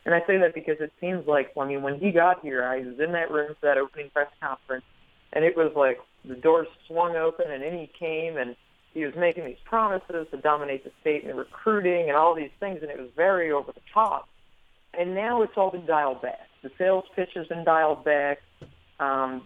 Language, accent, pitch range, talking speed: English, American, 140-165 Hz, 230 wpm